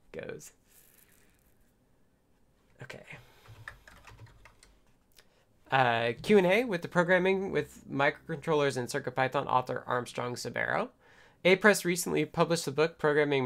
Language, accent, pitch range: English, American, 130-170 Hz